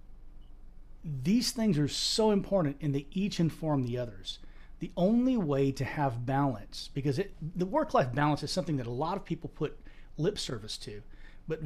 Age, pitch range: 40-59, 135-175 Hz